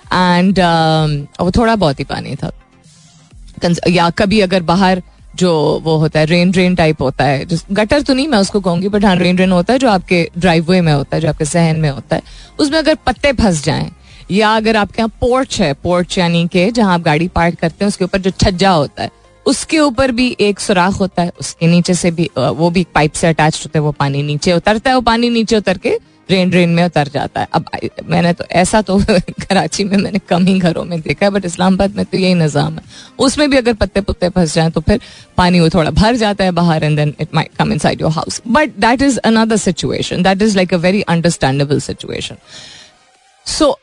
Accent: native